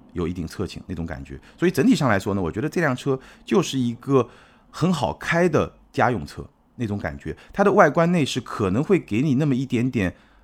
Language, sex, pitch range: Chinese, male, 90-135 Hz